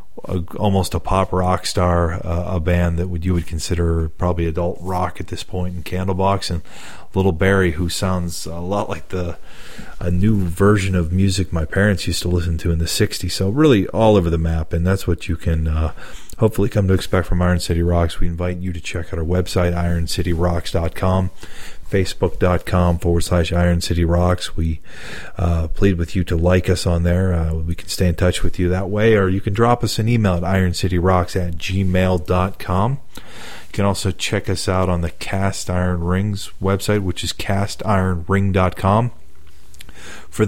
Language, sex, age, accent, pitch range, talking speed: English, male, 40-59, American, 85-95 Hz, 195 wpm